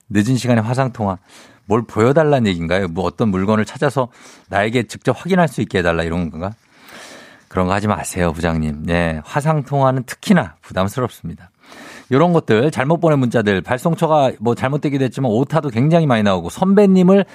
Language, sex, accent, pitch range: Korean, male, native, 105-165 Hz